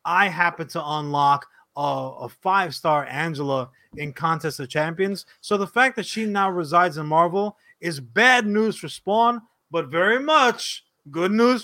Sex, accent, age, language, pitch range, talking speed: male, American, 30-49, English, 150-195 Hz, 160 wpm